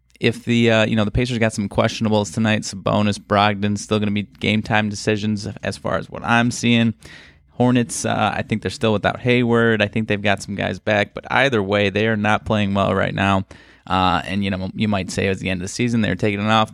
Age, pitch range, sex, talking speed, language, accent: 20-39, 95-115 Hz, male, 250 wpm, English, American